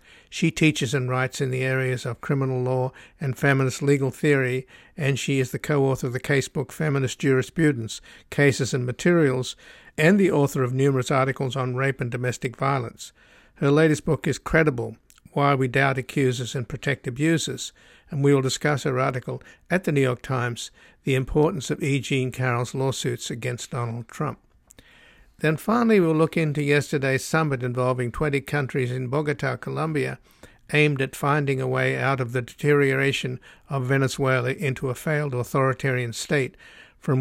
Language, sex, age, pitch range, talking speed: English, male, 60-79, 130-145 Hz, 165 wpm